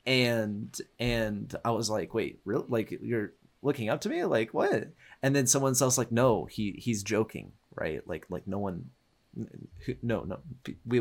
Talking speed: 175 wpm